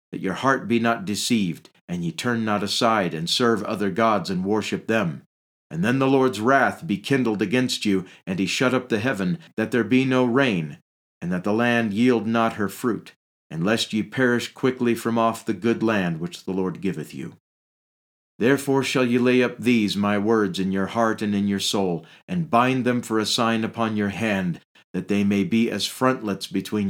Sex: male